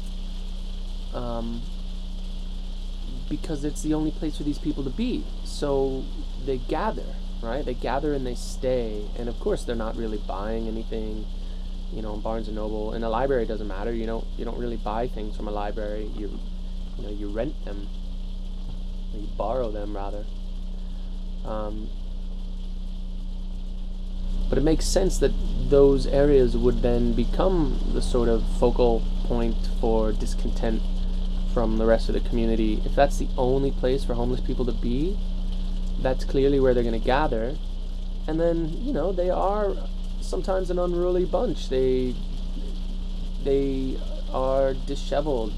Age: 20-39